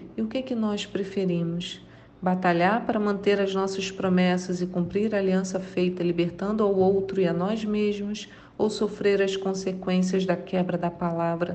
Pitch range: 180-210 Hz